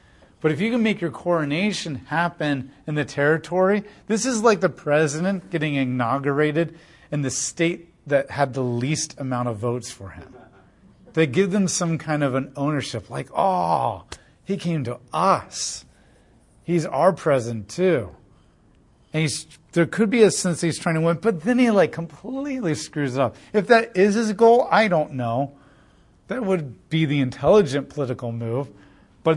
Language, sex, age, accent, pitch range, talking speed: English, male, 40-59, American, 135-185 Hz, 170 wpm